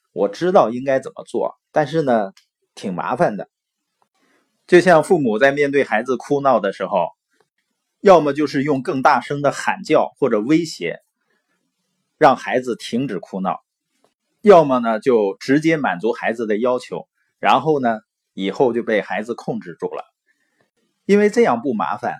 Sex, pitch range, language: male, 135-200 Hz, Chinese